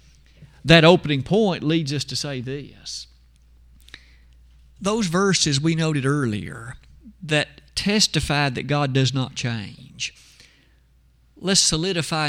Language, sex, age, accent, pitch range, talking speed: English, male, 50-69, American, 115-185 Hz, 105 wpm